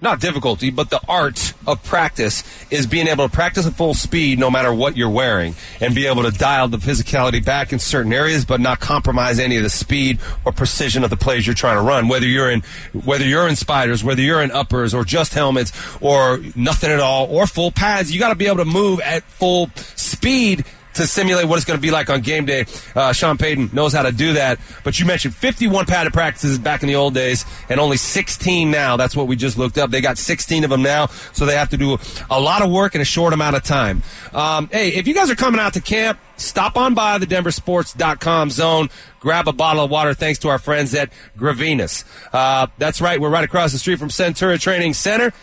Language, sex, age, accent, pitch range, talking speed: English, male, 30-49, American, 130-175 Hz, 235 wpm